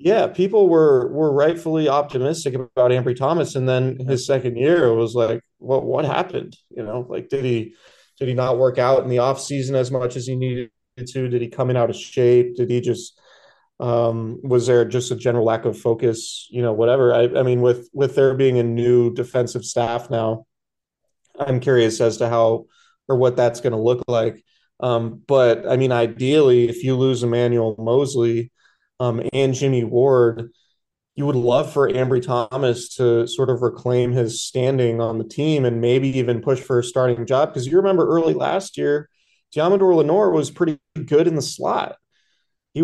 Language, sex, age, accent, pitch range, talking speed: English, male, 30-49, American, 120-140 Hz, 190 wpm